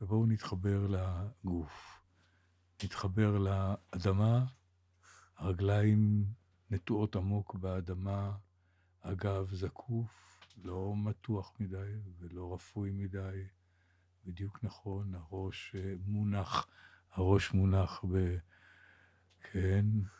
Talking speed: 75 wpm